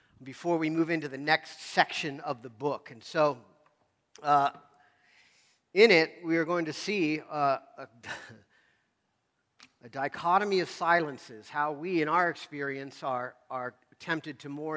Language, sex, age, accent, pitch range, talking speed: English, male, 50-69, American, 135-160 Hz, 145 wpm